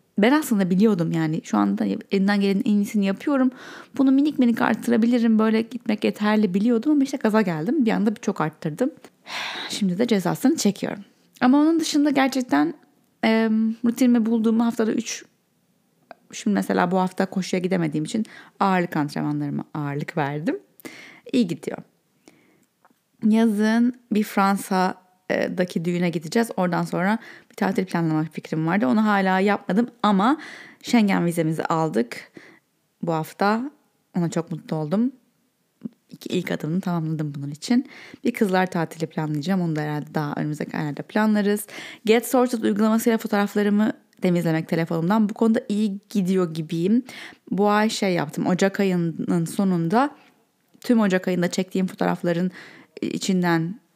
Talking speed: 130 wpm